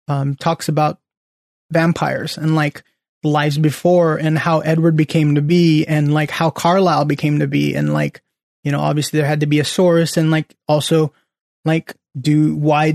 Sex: male